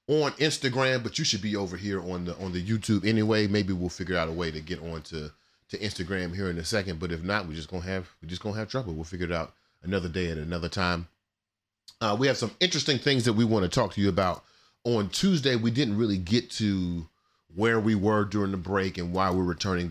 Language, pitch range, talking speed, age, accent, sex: English, 90-125 Hz, 250 wpm, 30-49, American, male